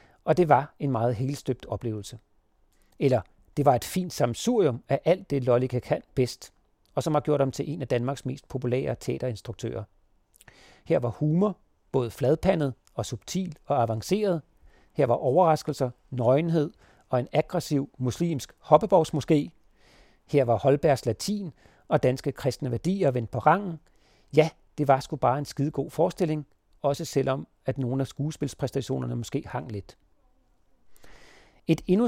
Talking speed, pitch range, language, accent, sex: 150 wpm, 125-160 Hz, Danish, native, male